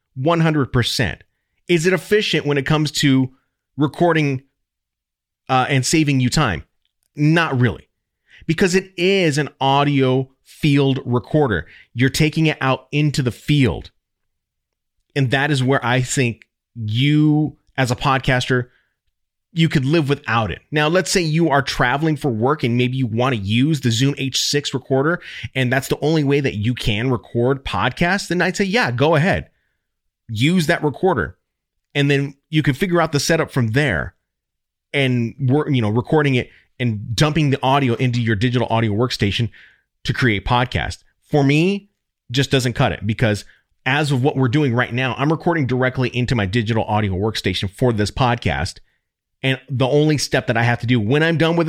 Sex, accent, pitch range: male, American, 120-150 Hz